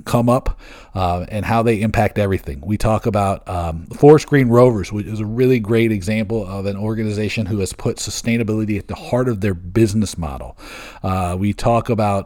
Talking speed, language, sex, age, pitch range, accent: 190 wpm, English, male, 40-59, 100-120 Hz, American